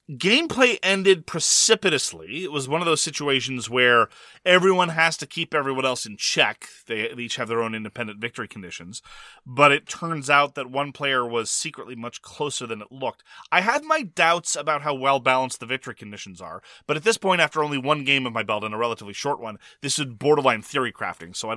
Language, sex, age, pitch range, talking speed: English, male, 30-49, 125-175 Hz, 205 wpm